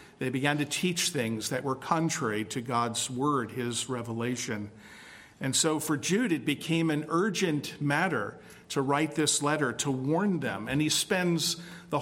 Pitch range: 130-160 Hz